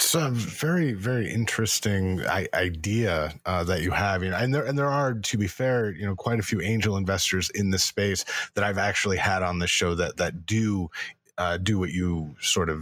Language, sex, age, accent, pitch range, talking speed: English, male, 30-49, American, 90-115 Hz, 215 wpm